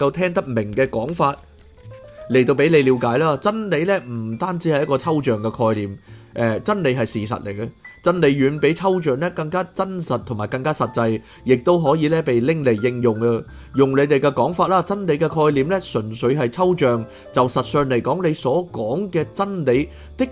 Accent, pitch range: native, 120-160 Hz